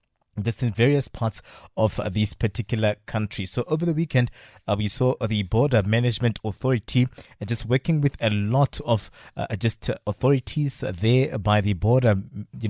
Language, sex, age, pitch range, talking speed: English, male, 20-39, 105-130 Hz, 175 wpm